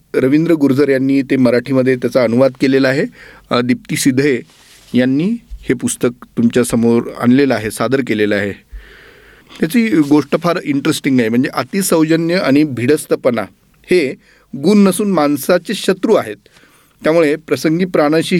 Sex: male